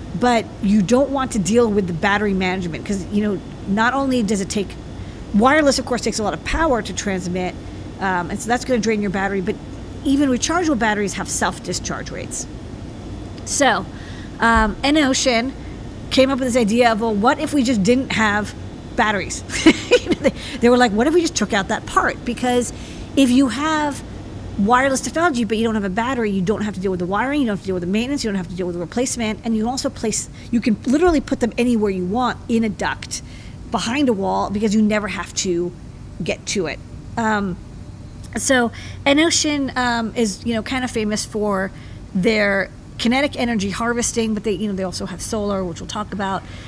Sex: female